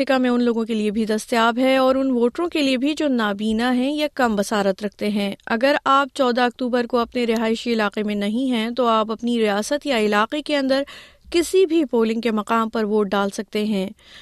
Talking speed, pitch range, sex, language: 215 wpm, 220-285 Hz, female, Urdu